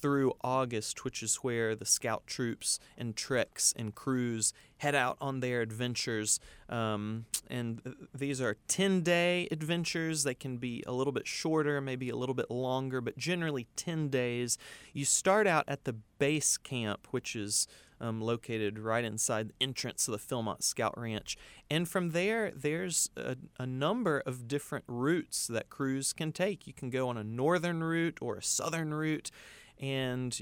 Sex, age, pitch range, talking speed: male, 30-49, 120-150 Hz, 170 wpm